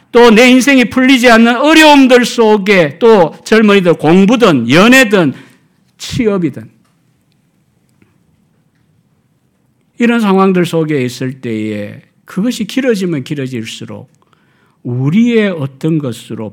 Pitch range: 130-215 Hz